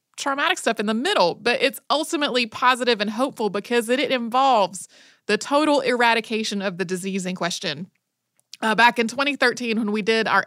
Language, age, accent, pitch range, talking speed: English, 30-49, American, 190-265 Hz, 170 wpm